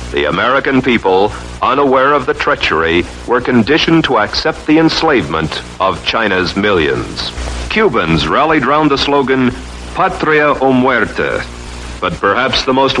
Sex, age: male, 60-79